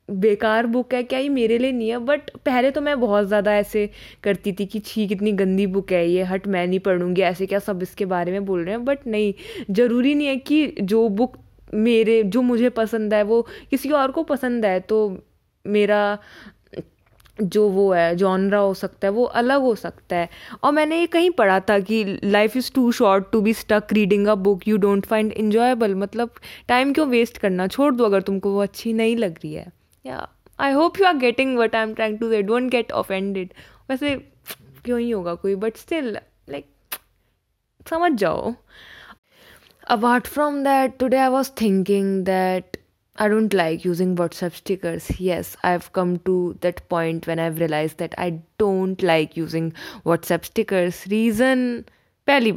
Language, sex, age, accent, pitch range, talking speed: Hindi, female, 20-39, native, 190-245 Hz, 185 wpm